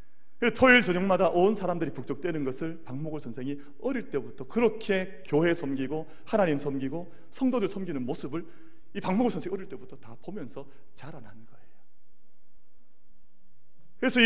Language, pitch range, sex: Korean, 125-180 Hz, male